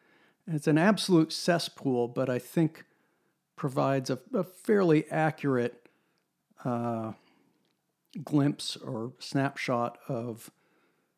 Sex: male